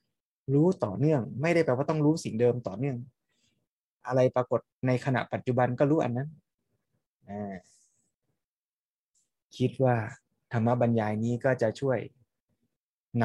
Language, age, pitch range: Thai, 20-39, 115-135 Hz